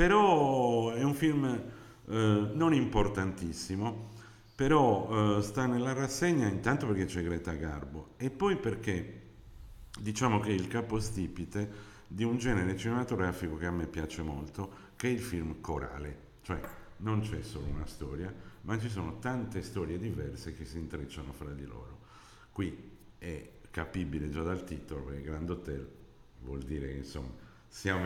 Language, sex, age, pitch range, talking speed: Italian, male, 50-69, 75-105 Hz, 150 wpm